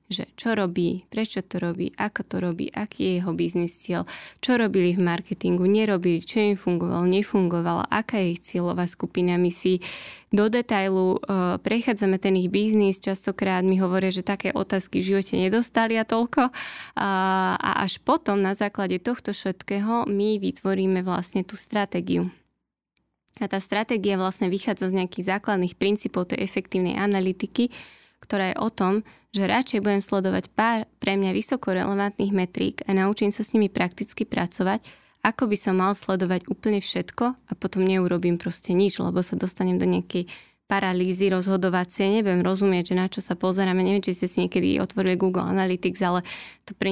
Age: 20-39